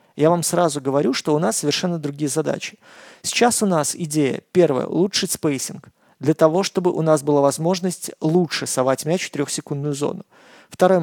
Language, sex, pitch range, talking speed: Russian, male, 145-175 Hz, 170 wpm